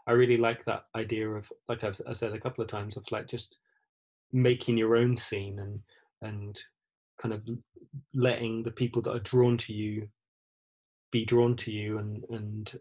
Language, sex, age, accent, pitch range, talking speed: English, male, 20-39, British, 105-125 Hz, 180 wpm